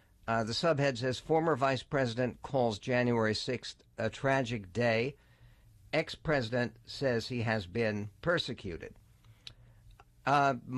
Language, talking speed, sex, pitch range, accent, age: English, 110 wpm, male, 115-145 Hz, American, 60-79